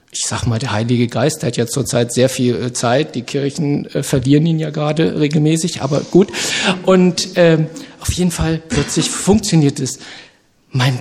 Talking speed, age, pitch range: 165 wpm, 50-69, 125-165 Hz